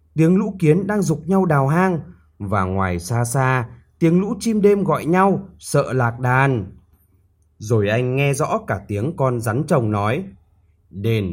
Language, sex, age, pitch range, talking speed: Vietnamese, male, 20-39, 95-160 Hz, 170 wpm